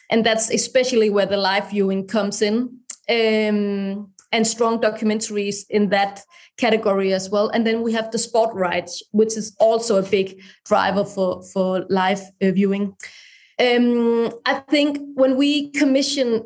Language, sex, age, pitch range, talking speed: English, female, 20-39, 210-250 Hz, 150 wpm